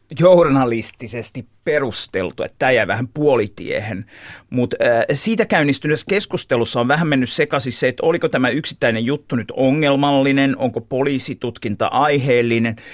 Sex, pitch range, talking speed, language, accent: male, 115-155 Hz, 120 wpm, Finnish, native